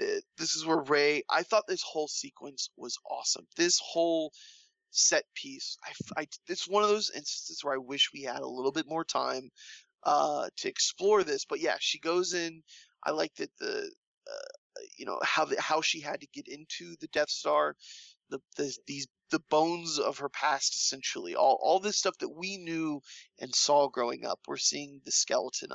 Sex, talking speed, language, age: male, 190 wpm, English, 20-39